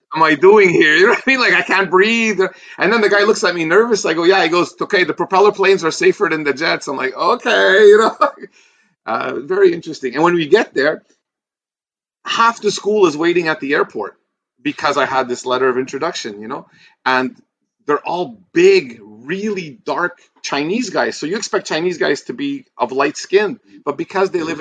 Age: 40-59